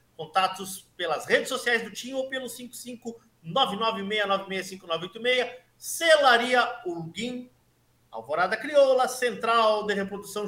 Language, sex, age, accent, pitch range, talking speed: Portuguese, male, 50-69, Brazilian, 165-235 Hz, 95 wpm